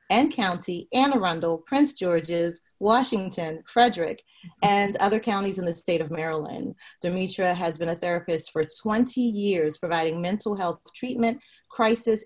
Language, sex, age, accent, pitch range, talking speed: English, female, 30-49, American, 165-205 Hz, 140 wpm